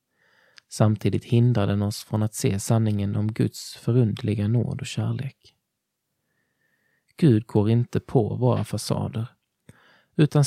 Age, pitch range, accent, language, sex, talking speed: 20-39, 110-125 Hz, native, Swedish, male, 120 wpm